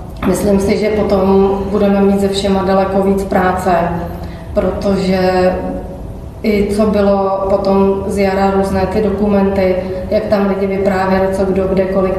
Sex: female